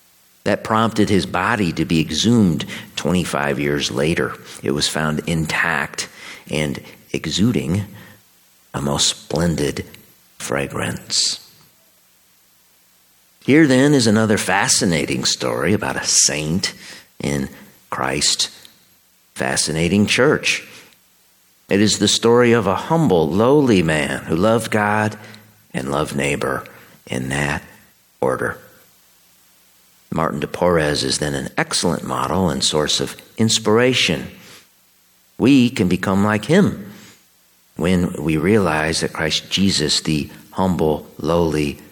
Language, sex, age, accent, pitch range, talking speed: English, male, 50-69, American, 75-105 Hz, 110 wpm